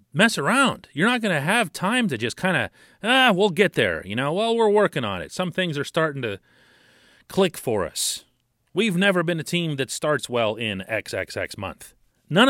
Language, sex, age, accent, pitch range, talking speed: English, male, 40-59, American, 120-185 Hz, 205 wpm